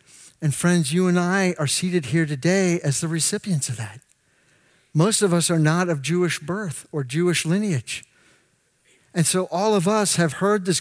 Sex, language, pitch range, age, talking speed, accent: male, English, 145-195 Hz, 50-69, 185 wpm, American